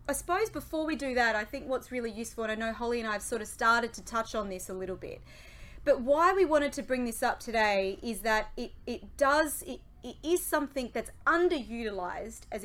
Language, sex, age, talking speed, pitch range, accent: English, female, 30-49, 230 wpm, 210-270 Hz, Australian